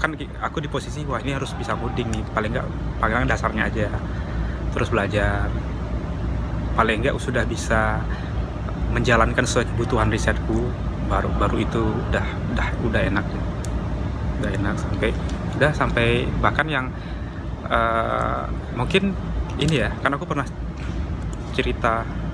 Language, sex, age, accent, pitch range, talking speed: Indonesian, male, 20-39, native, 95-125 Hz, 130 wpm